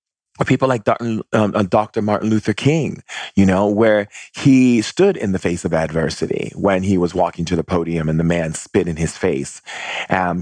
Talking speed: 180 wpm